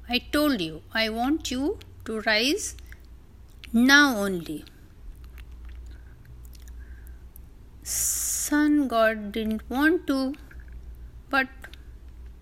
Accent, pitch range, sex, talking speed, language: native, 165-275 Hz, female, 75 wpm, Hindi